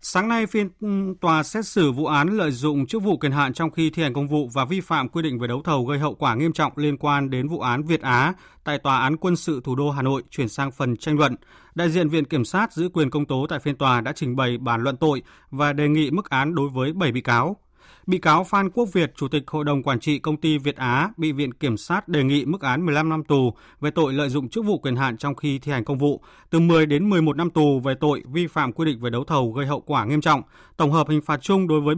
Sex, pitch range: male, 135-165 Hz